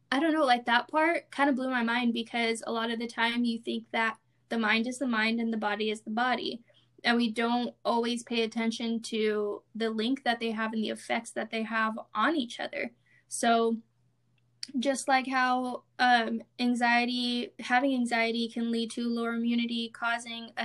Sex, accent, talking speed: female, American, 195 wpm